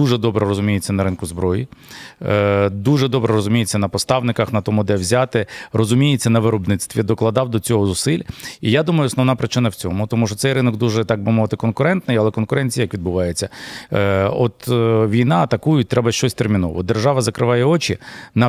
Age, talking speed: 40-59, 170 wpm